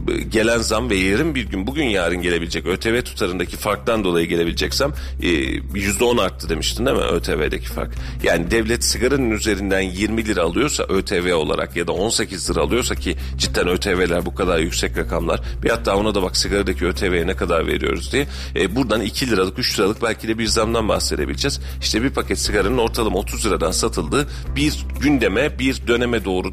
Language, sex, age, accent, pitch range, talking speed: Turkish, male, 40-59, native, 80-120 Hz, 175 wpm